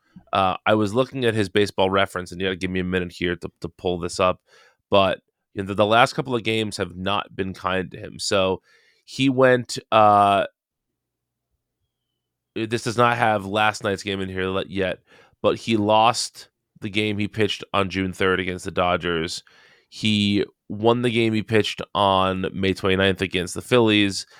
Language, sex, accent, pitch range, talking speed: English, male, American, 95-120 Hz, 180 wpm